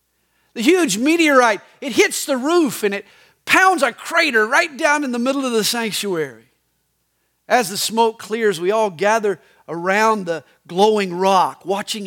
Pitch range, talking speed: 190-290 Hz, 160 wpm